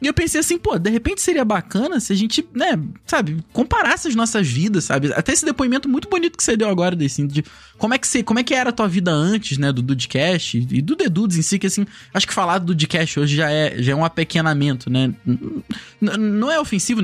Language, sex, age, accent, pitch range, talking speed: Portuguese, male, 20-39, Brazilian, 155-245 Hz, 245 wpm